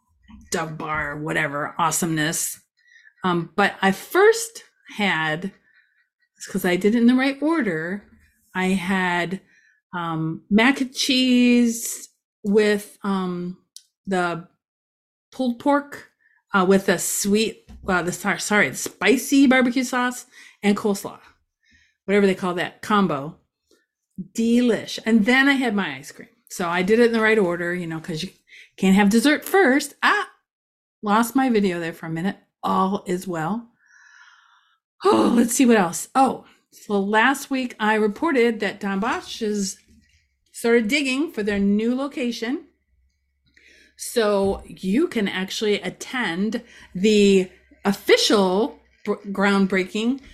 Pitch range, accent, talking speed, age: 185-250 Hz, American, 130 wpm, 30-49